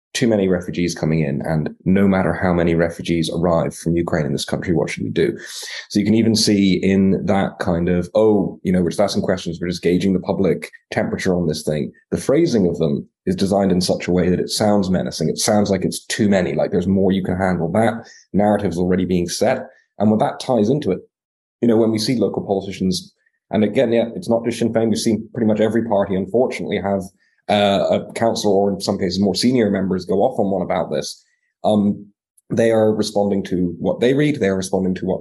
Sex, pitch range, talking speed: male, 90-110 Hz, 230 wpm